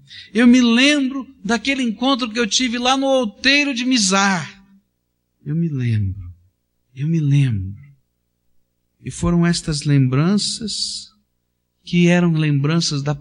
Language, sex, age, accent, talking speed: Portuguese, male, 60-79, Brazilian, 125 wpm